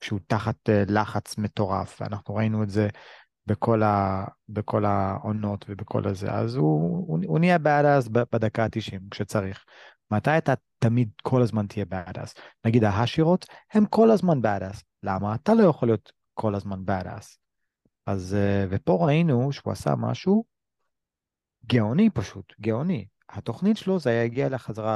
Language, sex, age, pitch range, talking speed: Hebrew, male, 30-49, 105-140 Hz, 140 wpm